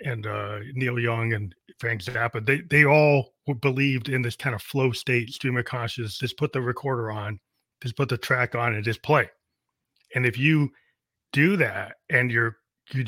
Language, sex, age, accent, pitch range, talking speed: English, male, 30-49, American, 120-140 Hz, 190 wpm